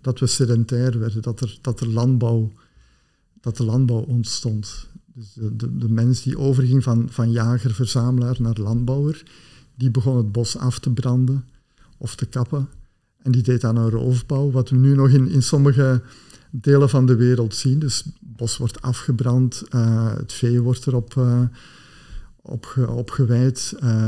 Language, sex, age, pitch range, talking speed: Dutch, male, 50-69, 120-135 Hz, 150 wpm